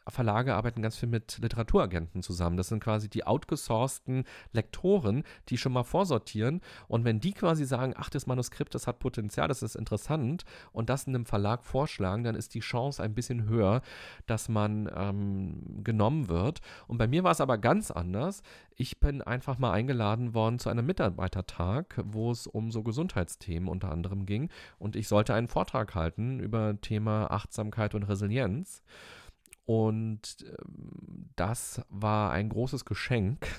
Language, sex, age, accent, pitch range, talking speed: German, male, 40-59, German, 100-125 Hz, 165 wpm